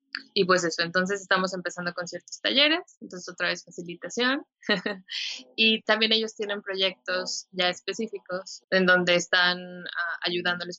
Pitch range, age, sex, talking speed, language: 175-210 Hz, 20-39, female, 140 wpm, Spanish